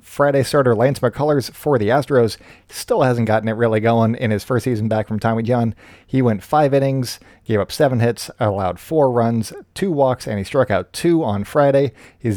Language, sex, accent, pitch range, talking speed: English, male, American, 110-135 Hz, 205 wpm